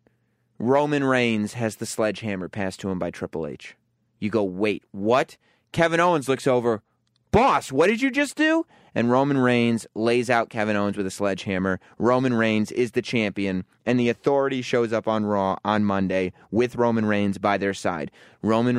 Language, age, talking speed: English, 30-49, 180 wpm